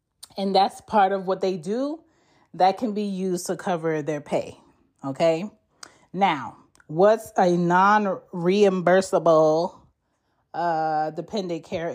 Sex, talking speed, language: female, 110 wpm, English